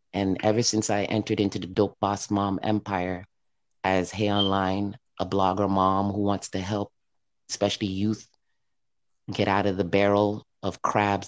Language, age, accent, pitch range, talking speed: English, 30-49, American, 95-105 Hz, 160 wpm